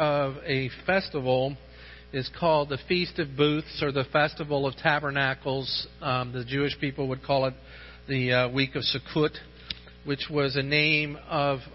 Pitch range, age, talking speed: 135-165 Hz, 50-69, 160 wpm